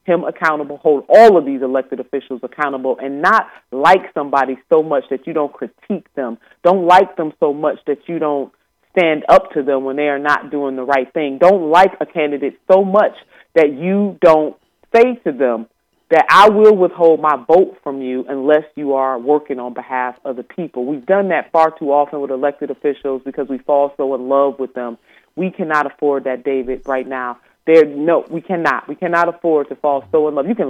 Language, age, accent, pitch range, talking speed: English, 30-49, American, 135-170 Hz, 205 wpm